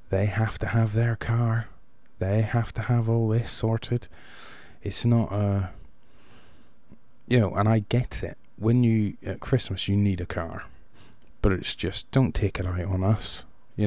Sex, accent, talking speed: male, British, 175 wpm